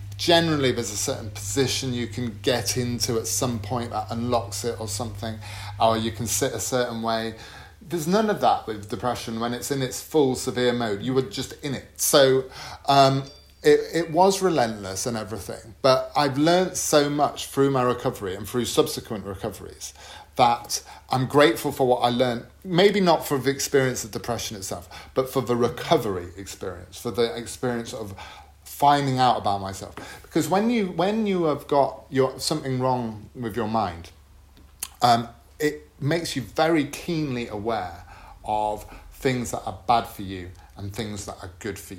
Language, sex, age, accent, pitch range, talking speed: English, male, 30-49, British, 105-135 Hz, 175 wpm